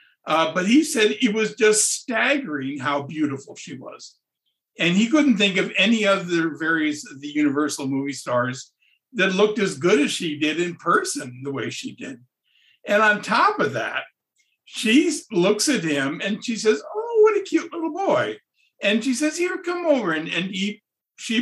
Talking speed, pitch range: 180 wpm, 165-255 Hz